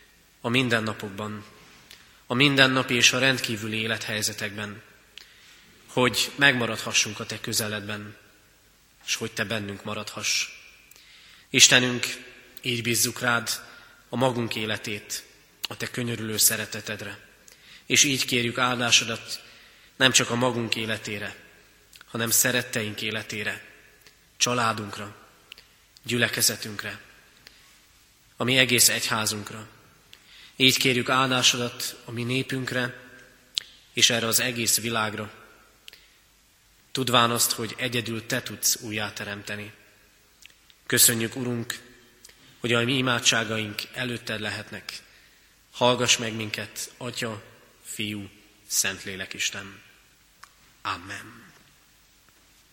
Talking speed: 90 wpm